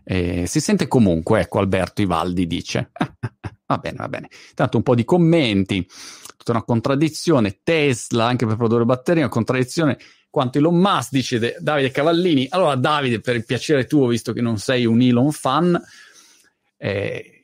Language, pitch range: Italian, 95-130 Hz